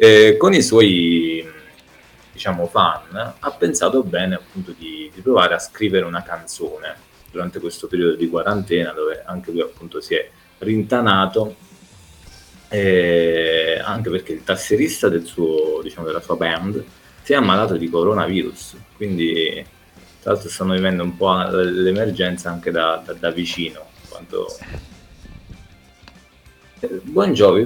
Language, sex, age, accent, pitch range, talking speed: Italian, male, 30-49, native, 85-125 Hz, 130 wpm